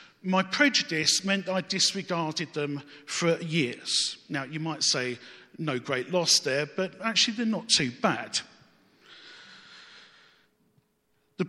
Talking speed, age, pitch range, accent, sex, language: 120 wpm, 50-69, 145-190 Hz, British, male, English